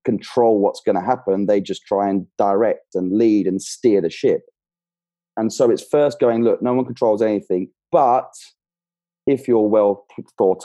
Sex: male